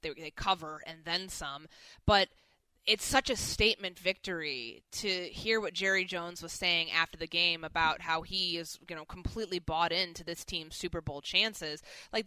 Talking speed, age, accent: 175 wpm, 20-39, American